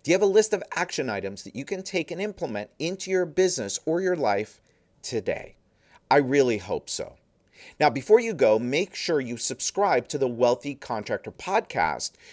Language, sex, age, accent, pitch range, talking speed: English, male, 50-69, American, 120-185 Hz, 185 wpm